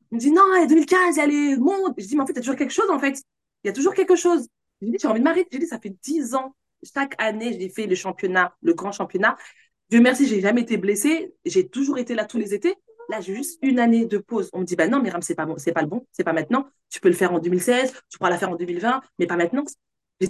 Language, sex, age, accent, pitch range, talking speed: French, female, 20-39, French, 200-275 Hz, 315 wpm